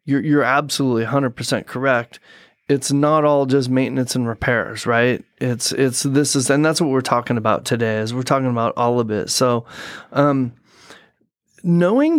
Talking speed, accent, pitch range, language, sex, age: 165 wpm, American, 130-165 Hz, English, male, 30-49